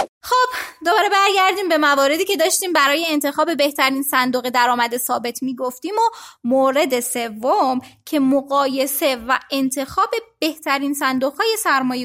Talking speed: 130 wpm